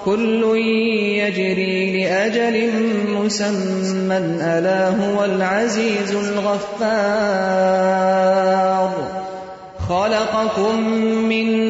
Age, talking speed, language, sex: 30-49, 50 wpm, Urdu, male